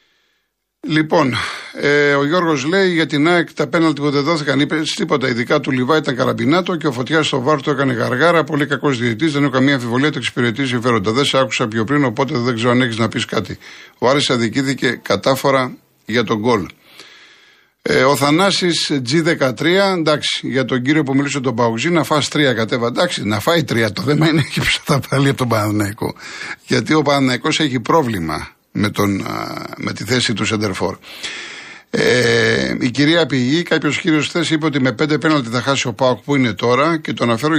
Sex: male